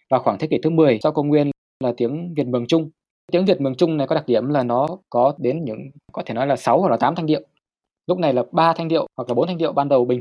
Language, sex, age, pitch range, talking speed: Vietnamese, male, 20-39, 125-155 Hz, 300 wpm